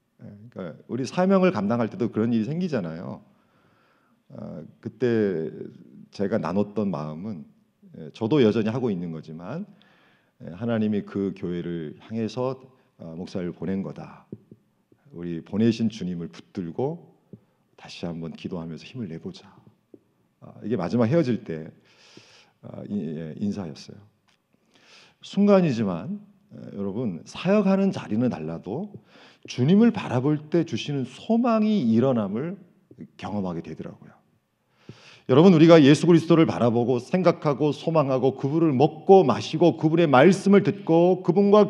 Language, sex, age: Korean, male, 40-59